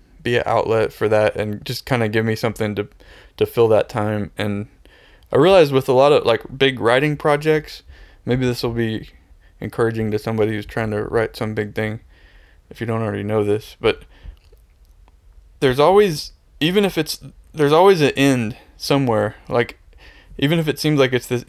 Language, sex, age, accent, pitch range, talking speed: English, male, 20-39, American, 105-130 Hz, 185 wpm